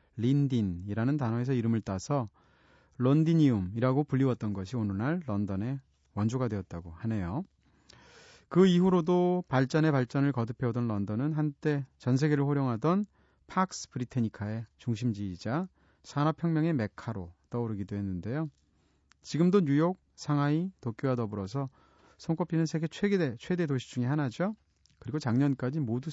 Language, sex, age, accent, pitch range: Korean, male, 30-49, native, 110-160 Hz